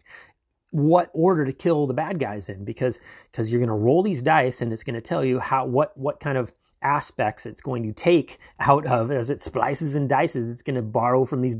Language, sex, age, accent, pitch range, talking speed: English, male, 30-49, American, 110-145 Hz, 235 wpm